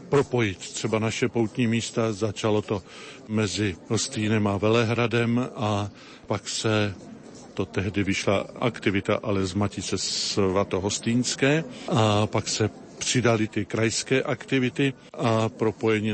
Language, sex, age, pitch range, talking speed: Slovak, male, 50-69, 105-120 Hz, 120 wpm